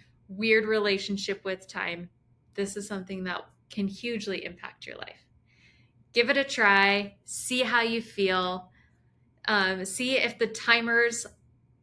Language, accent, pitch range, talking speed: English, American, 195-230 Hz, 130 wpm